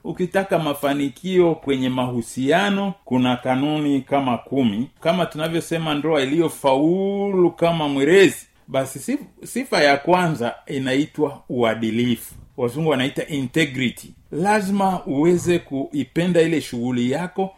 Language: Swahili